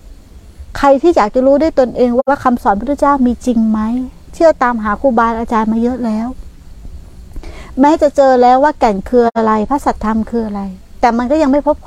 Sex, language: female, Thai